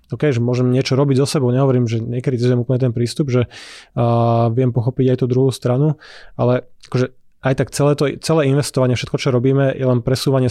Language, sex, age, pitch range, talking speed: Slovak, male, 20-39, 125-140 Hz, 205 wpm